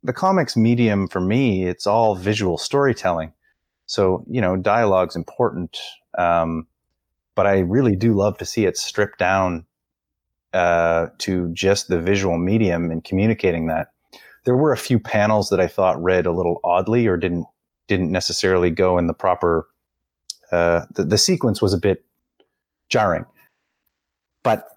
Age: 30-49